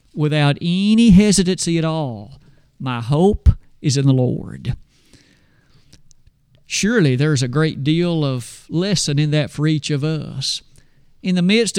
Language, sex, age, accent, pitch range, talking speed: English, male, 50-69, American, 150-205 Hz, 135 wpm